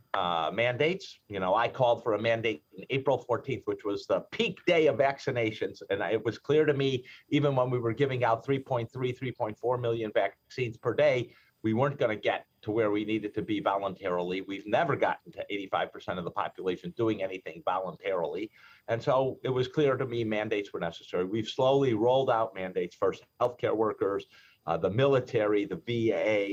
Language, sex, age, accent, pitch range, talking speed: English, male, 50-69, American, 100-130 Hz, 190 wpm